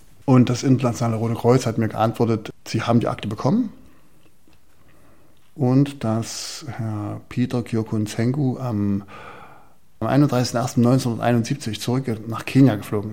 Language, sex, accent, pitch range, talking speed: German, male, German, 110-130 Hz, 110 wpm